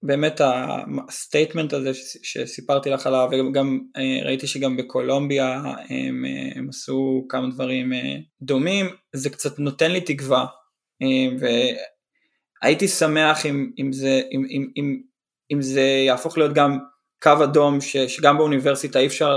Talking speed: 120 wpm